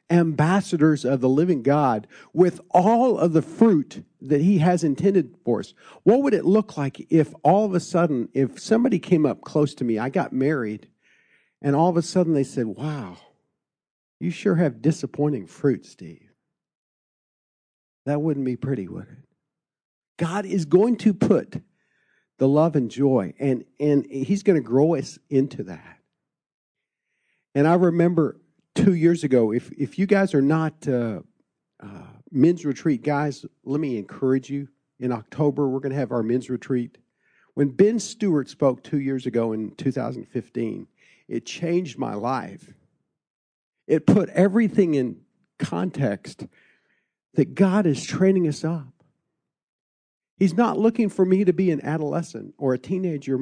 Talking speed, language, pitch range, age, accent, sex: 155 wpm, English, 135-180 Hz, 50-69, American, male